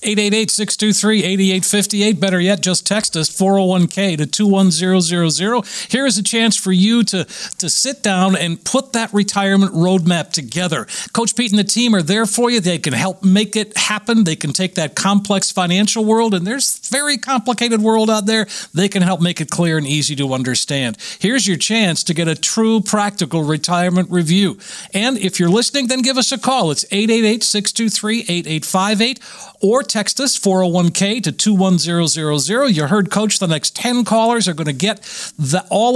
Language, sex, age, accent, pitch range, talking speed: English, male, 50-69, American, 175-220 Hz, 185 wpm